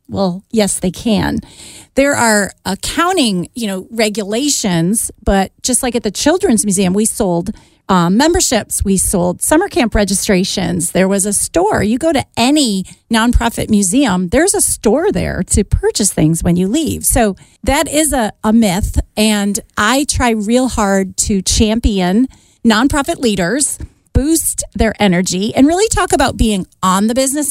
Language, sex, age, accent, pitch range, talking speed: English, female, 40-59, American, 195-250 Hz, 155 wpm